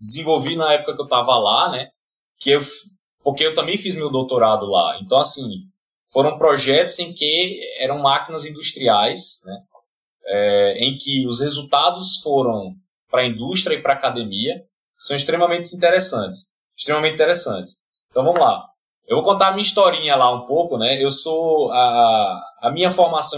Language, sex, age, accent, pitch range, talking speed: Portuguese, male, 20-39, Brazilian, 130-175 Hz, 165 wpm